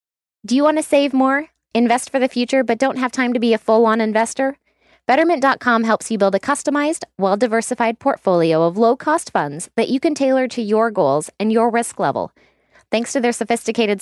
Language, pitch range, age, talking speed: English, 200-255 Hz, 20-39, 195 wpm